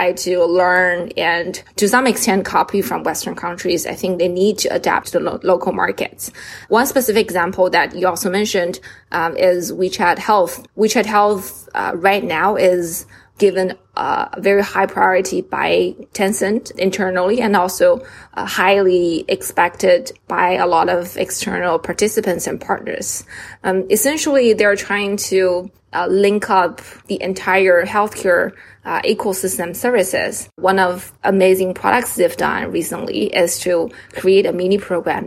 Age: 20-39